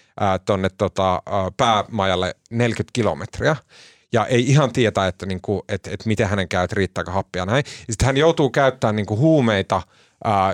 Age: 30-49